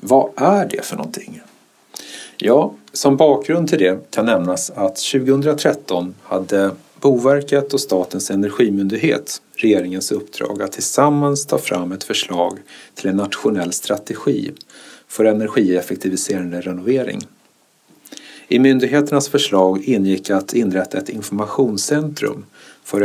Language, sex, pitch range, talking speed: Swedish, male, 95-140 Hz, 110 wpm